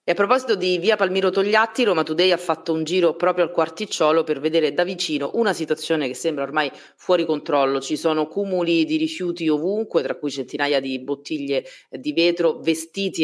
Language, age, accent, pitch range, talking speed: Italian, 30-49, native, 145-180 Hz, 185 wpm